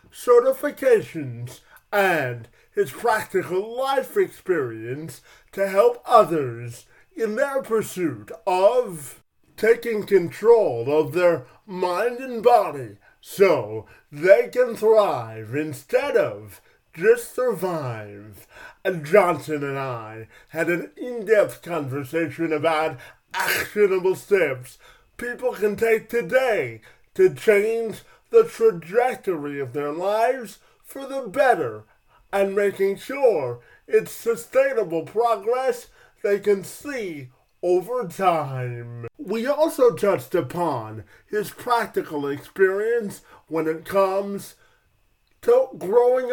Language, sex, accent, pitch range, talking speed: English, male, American, 150-245 Hz, 100 wpm